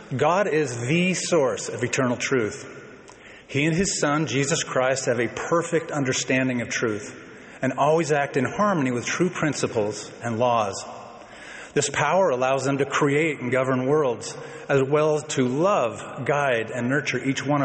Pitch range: 130-160 Hz